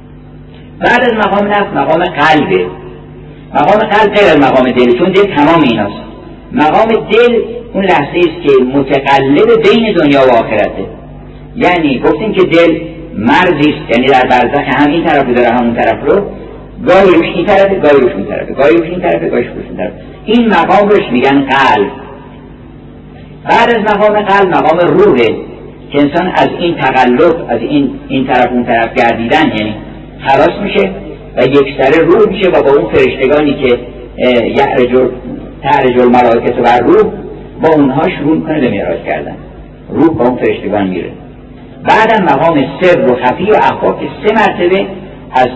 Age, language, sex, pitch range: 40-59, Persian, male, 125-195 Hz